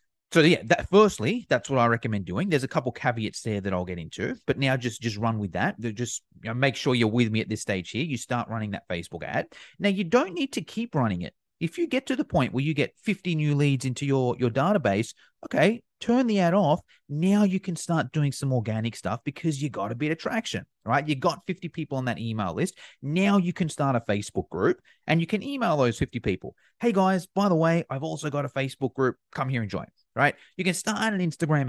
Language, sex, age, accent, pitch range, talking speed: English, male, 30-49, Australian, 125-175 Hz, 250 wpm